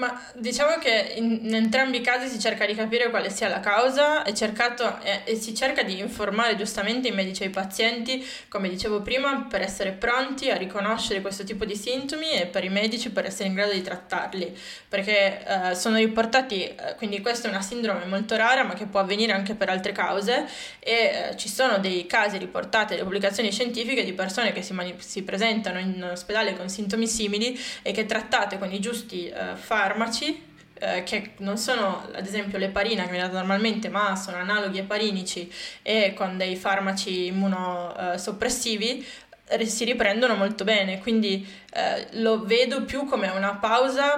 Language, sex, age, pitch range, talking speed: Italian, female, 20-39, 195-240 Hz, 180 wpm